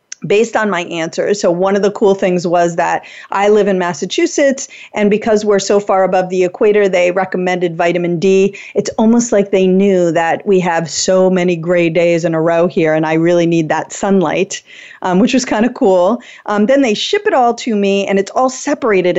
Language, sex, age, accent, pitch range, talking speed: English, female, 30-49, American, 185-255 Hz, 210 wpm